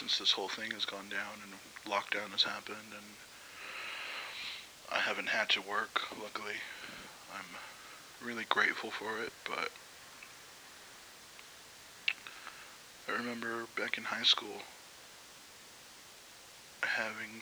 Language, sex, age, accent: English, male, 20-39, American